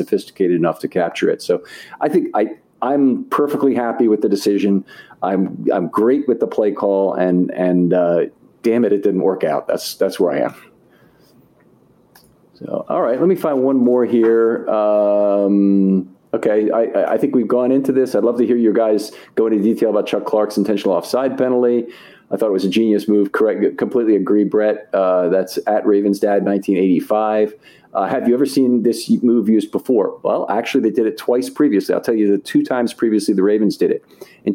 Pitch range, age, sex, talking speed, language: 100-125 Hz, 40-59, male, 200 wpm, English